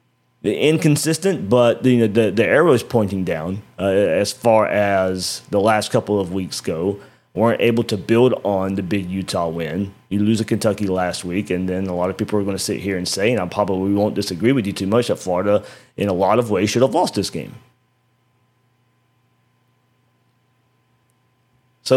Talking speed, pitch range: 195 wpm, 100-125 Hz